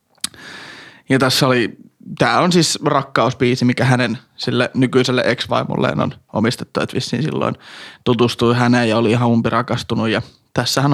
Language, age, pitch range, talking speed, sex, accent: Finnish, 20-39, 120-140 Hz, 135 wpm, male, native